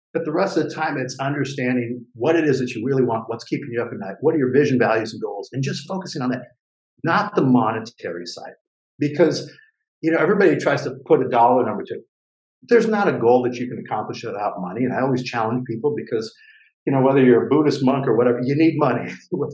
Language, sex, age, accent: English, male, 50-69, American